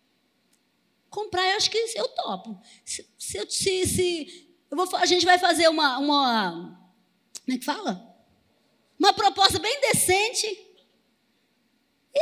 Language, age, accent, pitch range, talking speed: Portuguese, 20-39, Brazilian, 225-300 Hz, 130 wpm